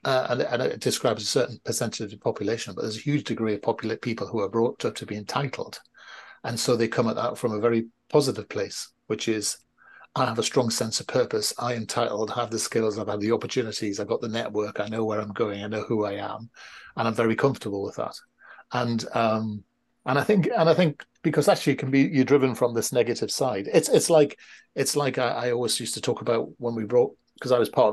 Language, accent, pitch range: English, British, 110-145 Hz